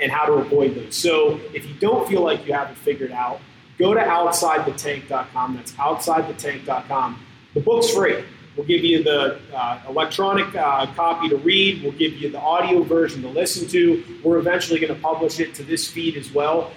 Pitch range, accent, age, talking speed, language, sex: 150-195 Hz, American, 30-49, 195 wpm, English, male